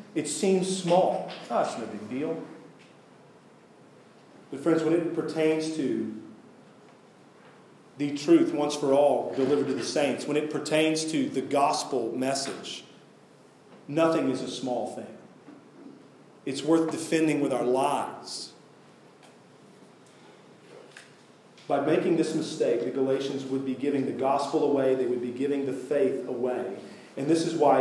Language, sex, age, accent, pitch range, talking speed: English, male, 40-59, American, 135-160 Hz, 140 wpm